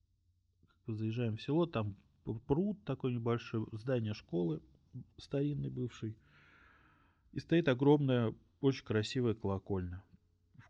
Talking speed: 100 wpm